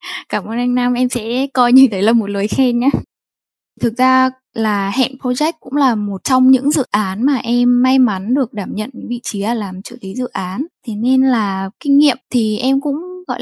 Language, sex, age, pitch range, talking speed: Vietnamese, female, 10-29, 220-265 Hz, 225 wpm